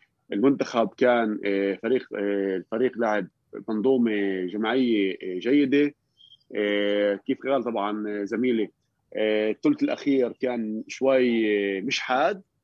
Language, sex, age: Arabic, male, 30-49